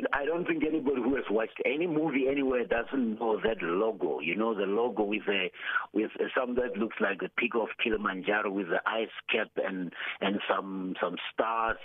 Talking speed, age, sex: 190 wpm, 60-79, male